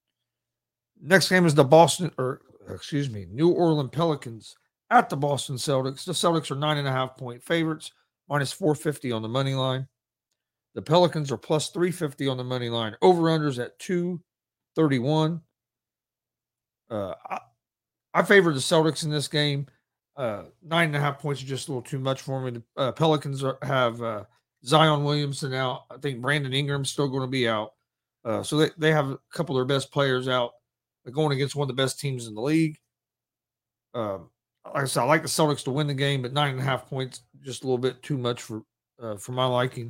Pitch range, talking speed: 125-155 Hz, 200 wpm